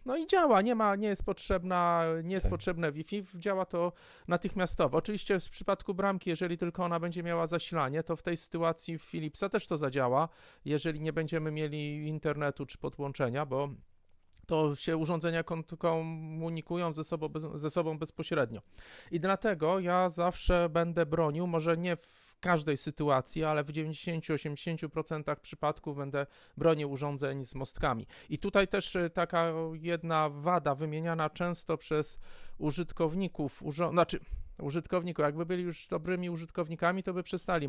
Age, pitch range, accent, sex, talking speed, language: 40-59, 155-185 Hz, native, male, 145 wpm, Polish